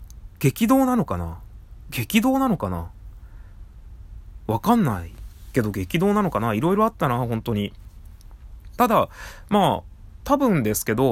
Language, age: Japanese, 20-39